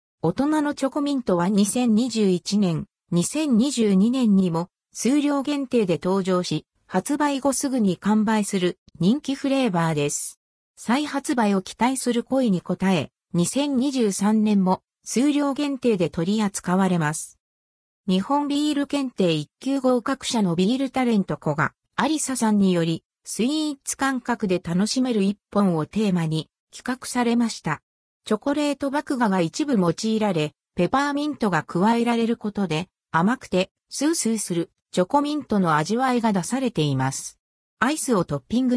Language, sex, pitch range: Japanese, female, 180-270 Hz